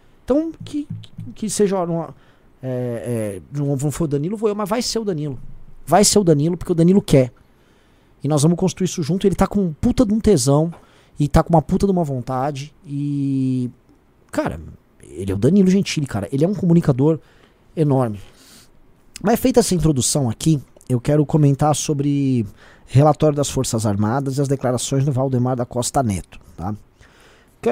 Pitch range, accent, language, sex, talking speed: 130-185 Hz, Brazilian, Portuguese, male, 175 wpm